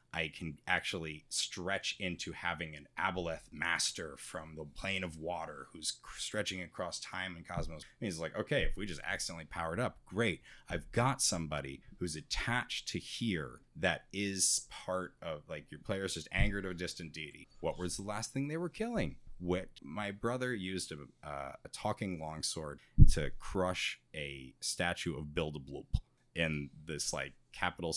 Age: 30-49